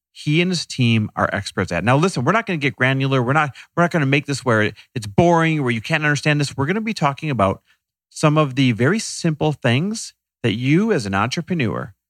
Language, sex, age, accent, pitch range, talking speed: English, male, 40-59, American, 100-150 Hz, 240 wpm